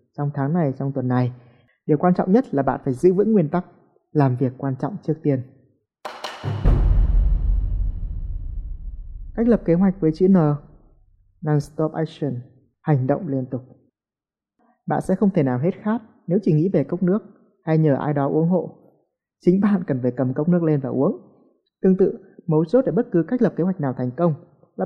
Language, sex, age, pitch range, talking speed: Vietnamese, male, 20-39, 130-180 Hz, 195 wpm